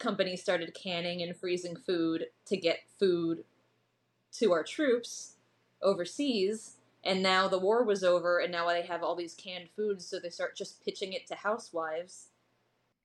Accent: American